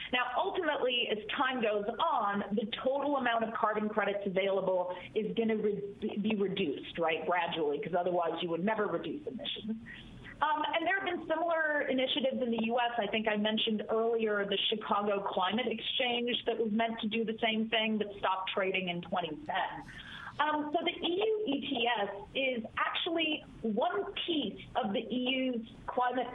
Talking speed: 165 wpm